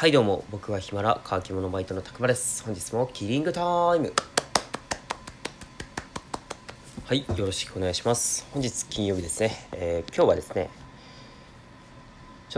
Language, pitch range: Japanese, 90-120 Hz